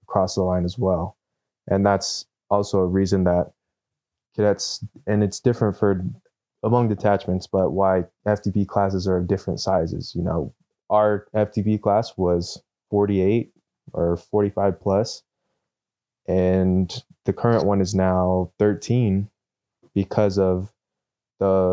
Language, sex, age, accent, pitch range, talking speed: English, male, 20-39, American, 95-105 Hz, 130 wpm